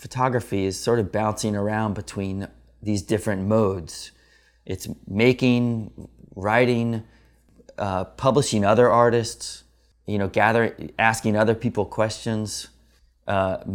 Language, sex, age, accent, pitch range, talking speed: English, male, 30-49, American, 90-110 Hz, 110 wpm